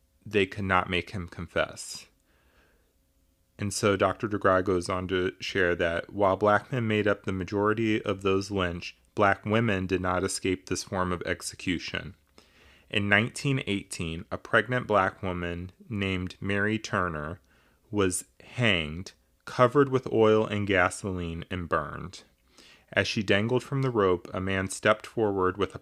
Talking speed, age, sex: 150 wpm, 30-49, male